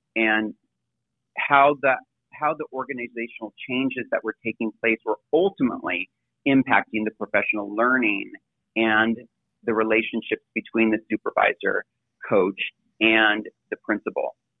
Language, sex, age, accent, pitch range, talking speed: English, male, 30-49, American, 110-140 Hz, 110 wpm